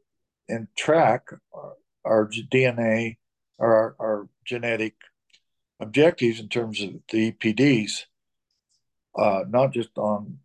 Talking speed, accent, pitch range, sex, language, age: 110 wpm, American, 105-130 Hz, male, English, 50-69